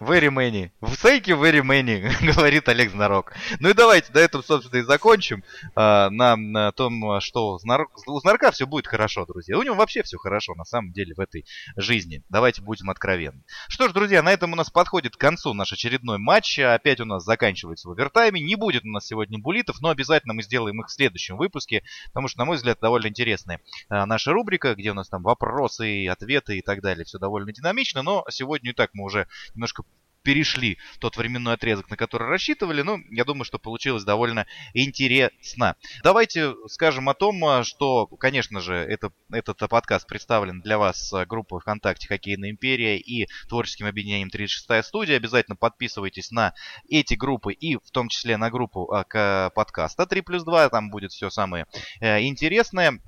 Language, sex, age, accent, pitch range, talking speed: Russian, male, 20-39, native, 100-140 Hz, 180 wpm